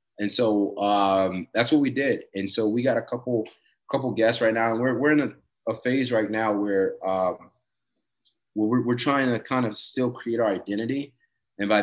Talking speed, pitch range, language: 205 wpm, 100-115 Hz, English